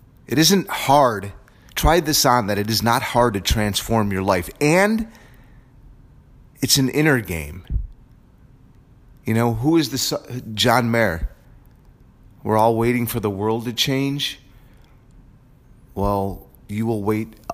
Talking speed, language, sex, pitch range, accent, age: 135 wpm, English, male, 95-125 Hz, American, 30-49